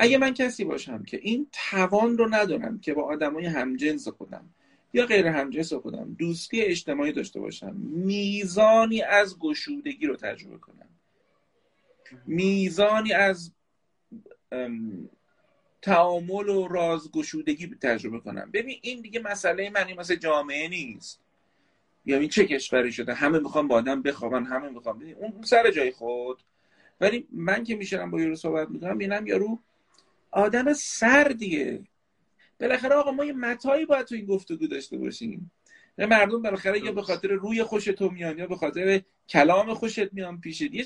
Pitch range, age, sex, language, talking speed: 175-245 Hz, 40-59, male, Persian, 150 wpm